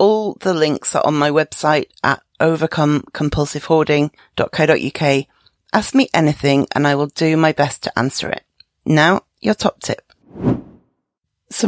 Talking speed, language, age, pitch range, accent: 135 wpm, English, 40-59, 145-195 Hz, British